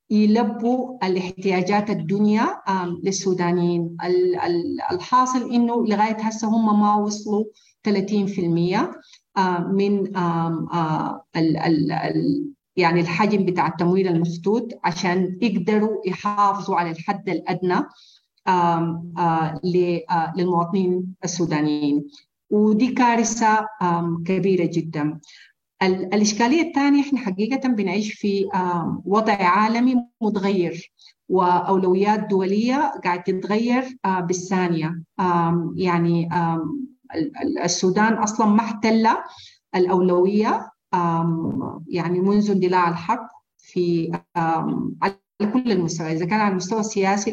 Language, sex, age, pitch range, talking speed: English, female, 40-59, 175-215 Hz, 75 wpm